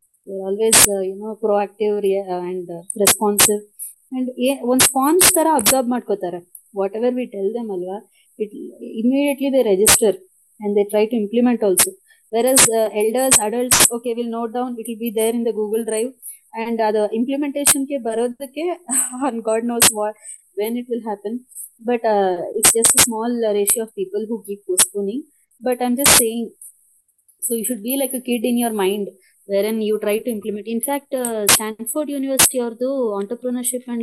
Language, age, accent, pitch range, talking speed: English, 20-39, Indian, 210-250 Hz, 170 wpm